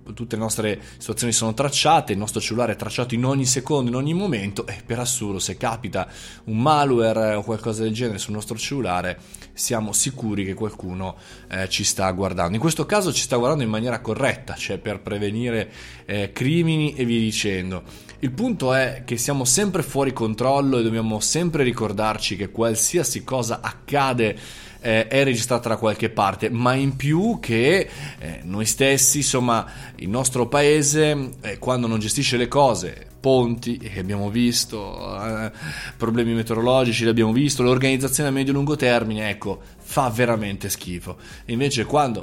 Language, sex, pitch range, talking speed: Italian, male, 110-135 Hz, 160 wpm